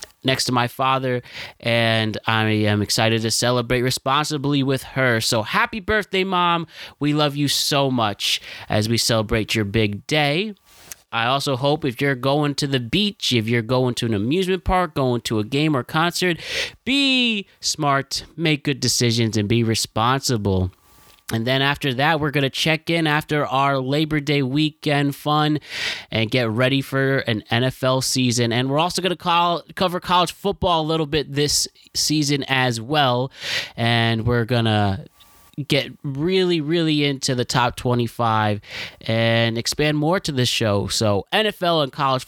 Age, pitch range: 20-39, 115-150 Hz